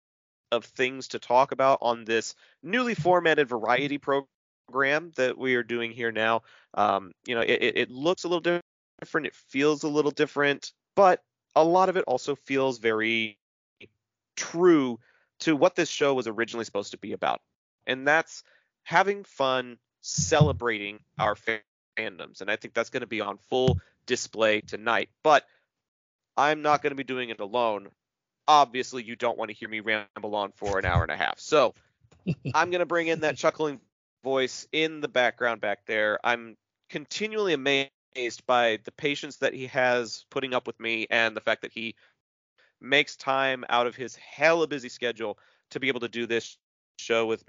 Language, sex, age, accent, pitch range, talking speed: English, male, 30-49, American, 115-150 Hz, 175 wpm